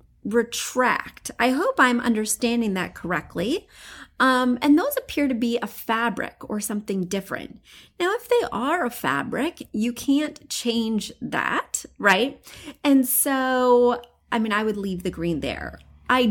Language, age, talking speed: English, 30-49, 145 wpm